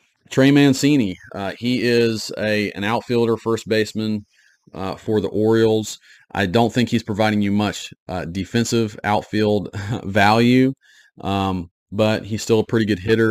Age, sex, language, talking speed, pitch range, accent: 40-59, male, English, 150 wpm, 90-110 Hz, American